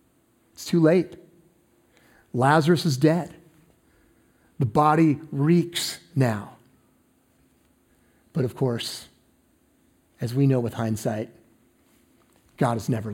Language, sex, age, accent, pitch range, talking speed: English, male, 40-59, American, 125-145 Hz, 95 wpm